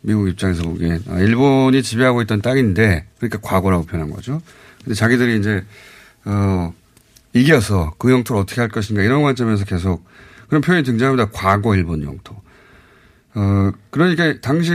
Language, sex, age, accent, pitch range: Korean, male, 30-49, native, 100-140 Hz